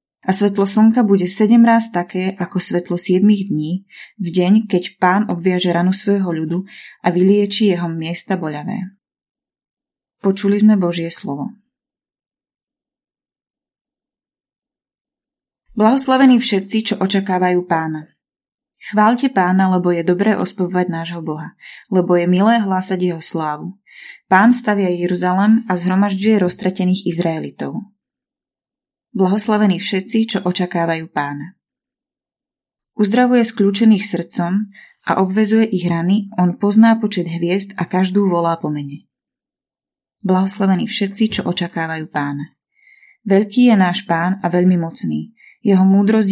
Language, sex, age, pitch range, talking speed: Slovak, female, 20-39, 175-210 Hz, 115 wpm